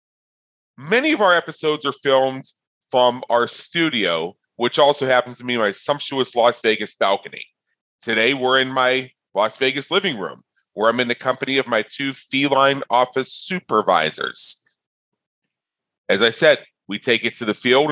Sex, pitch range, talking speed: male, 120-155 Hz, 155 wpm